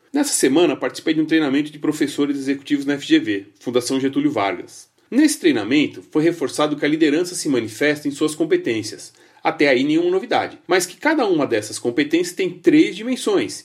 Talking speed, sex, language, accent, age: 170 wpm, male, Portuguese, Brazilian, 40-59